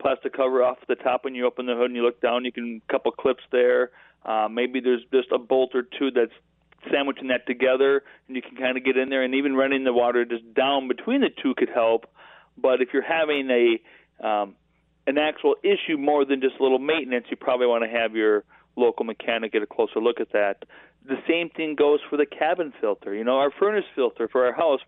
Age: 40-59